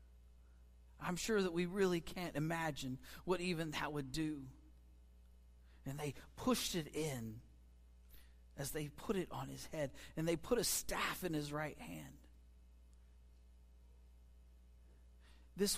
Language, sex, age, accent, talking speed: English, male, 50-69, American, 130 wpm